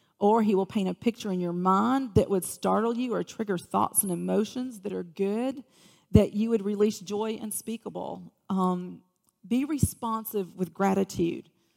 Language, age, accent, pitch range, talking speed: English, 40-59, American, 180-220 Hz, 165 wpm